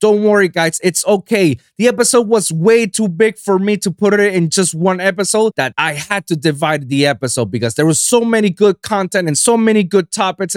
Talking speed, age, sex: 220 wpm, 20-39, male